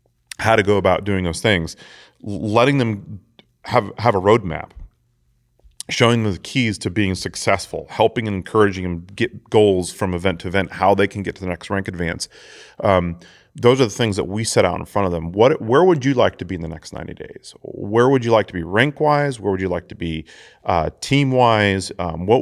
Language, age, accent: English, 30-49, American